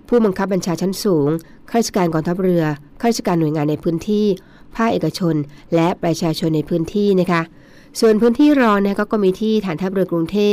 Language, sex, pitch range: Thai, female, 160-205 Hz